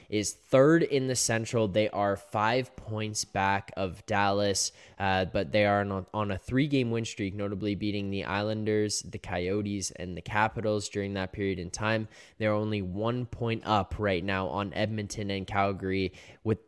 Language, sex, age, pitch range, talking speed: English, male, 10-29, 95-110 Hz, 170 wpm